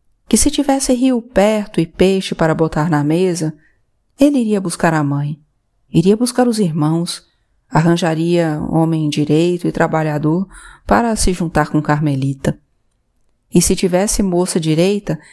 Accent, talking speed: Brazilian, 135 wpm